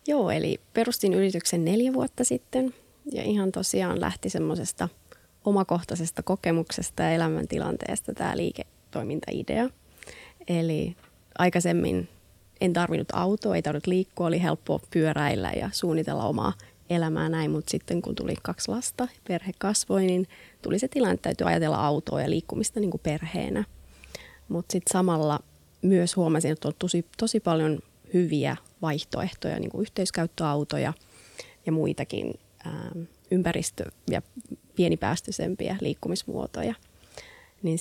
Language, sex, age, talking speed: Finnish, female, 20-39, 120 wpm